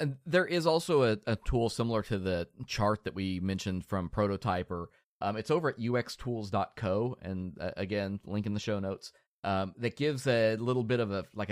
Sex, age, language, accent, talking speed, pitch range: male, 20-39, English, American, 200 wpm, 95-115 Hz